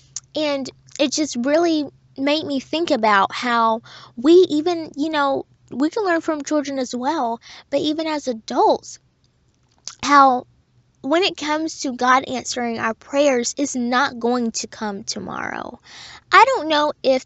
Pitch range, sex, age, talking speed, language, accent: 225-295 Hz, female, 10-29, 150 wpm, English, American